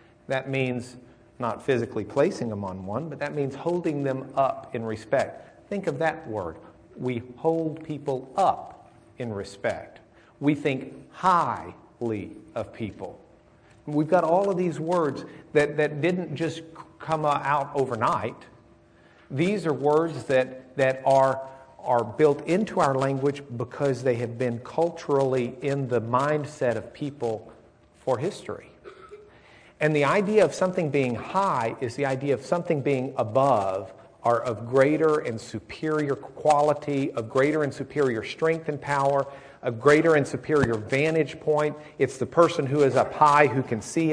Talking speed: 150 wpm